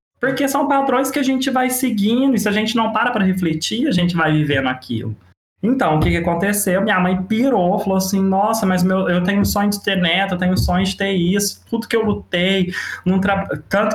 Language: Portuguese